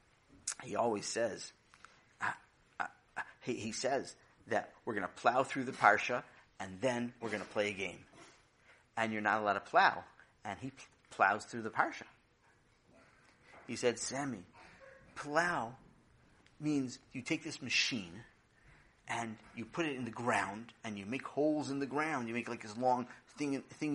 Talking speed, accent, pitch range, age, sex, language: 165 wpm, American, 110-130 Hz, 40-59, male, English